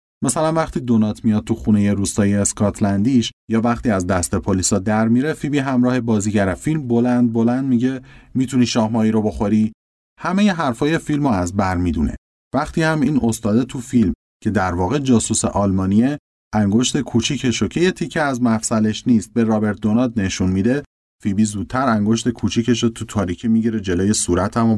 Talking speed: 160 wpm